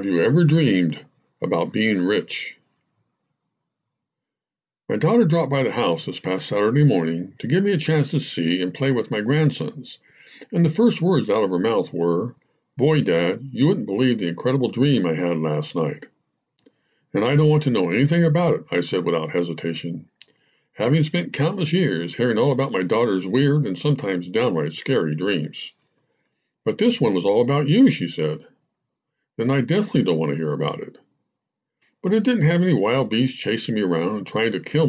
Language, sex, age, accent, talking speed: English, male, 60-79, American, 190 wpm